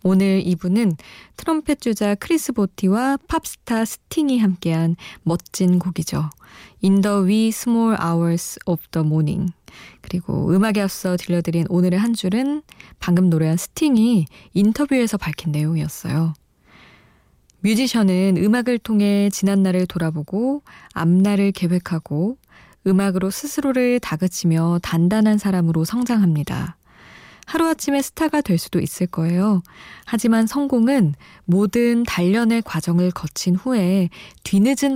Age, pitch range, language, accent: 20-39, 170-225 Hz, Korean, native